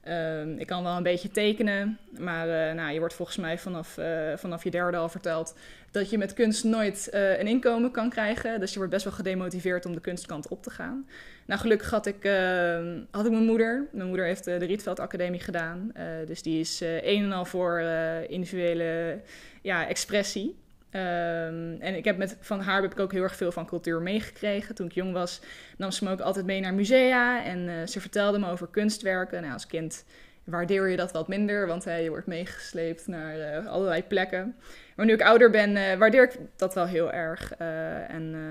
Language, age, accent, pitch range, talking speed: Dutch, 20-39, Dutch, 170-205 Hz, 205 wpm